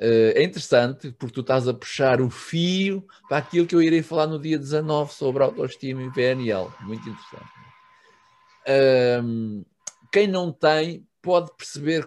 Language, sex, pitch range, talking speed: Portuguese, male, 125-170 Hz, 145 wpm